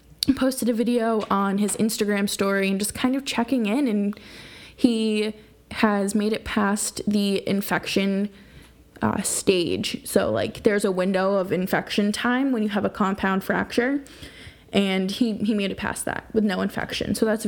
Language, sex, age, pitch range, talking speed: English, female, 10-29, 205-255 Hz, 170 wpm